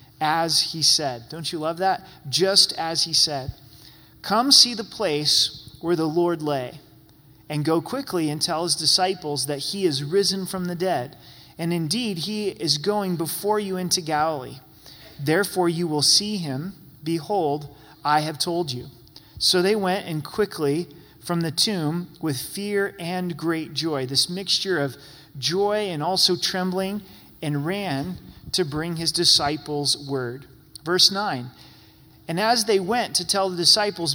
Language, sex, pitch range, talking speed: English, male, 150-190 Hz, 155 wpm